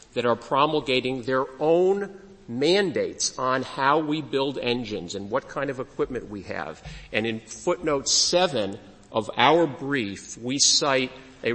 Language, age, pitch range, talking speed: English, 50-69, 115-150 Hz, 145 wpm